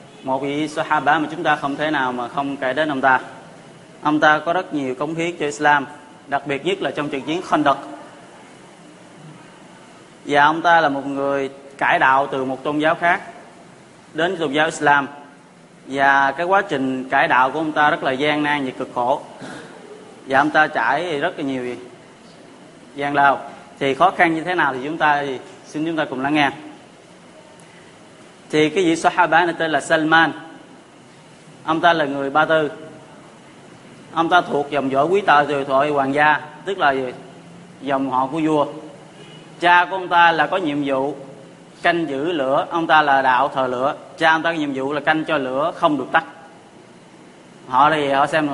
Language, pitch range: Vietnamese, 135-160 Hz